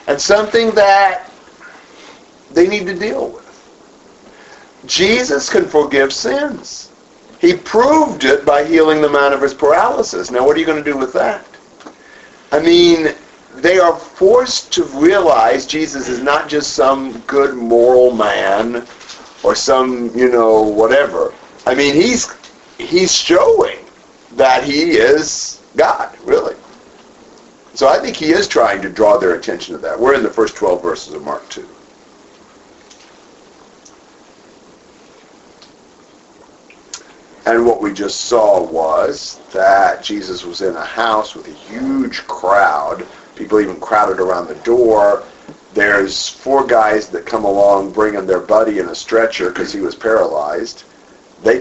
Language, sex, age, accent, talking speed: English, male, 50-69, American, 140 wpm